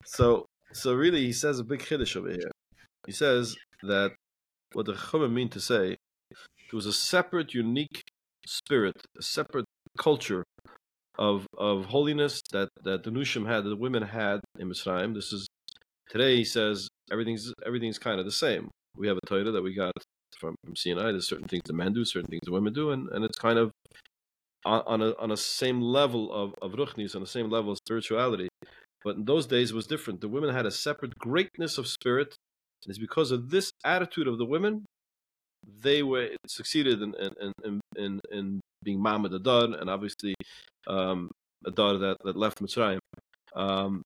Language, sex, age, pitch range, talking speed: English, male, 40-59, 100-125 Hz, 190 wpm